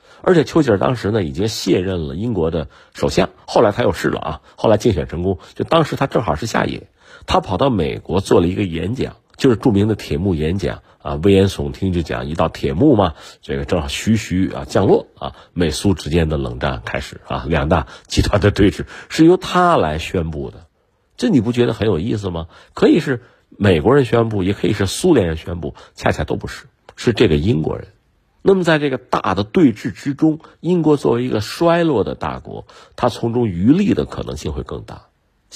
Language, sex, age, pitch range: Chinese, male, 50-69, 80-125 Hz